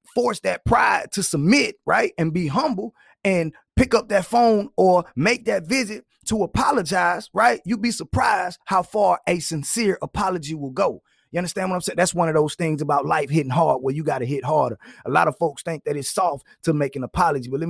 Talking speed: 220 wpm